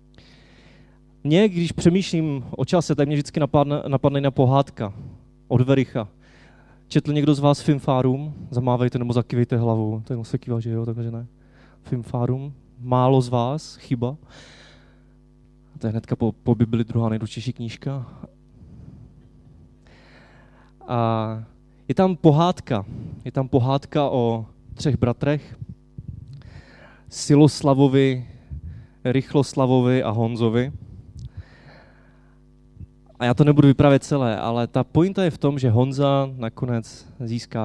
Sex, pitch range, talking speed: male, 120-140 Hz, 120 wpm